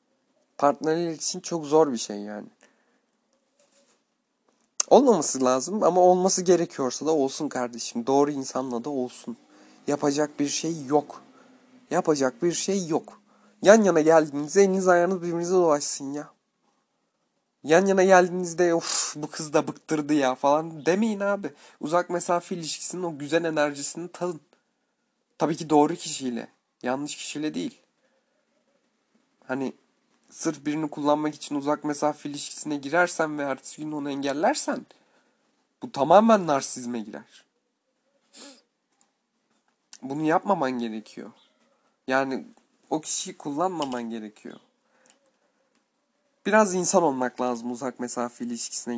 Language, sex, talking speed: Turkish, male, 115 wpm